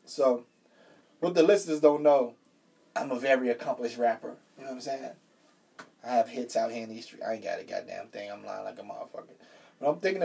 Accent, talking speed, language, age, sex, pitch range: American, 225 wpm, English, 20-39, male, 120-145 Hz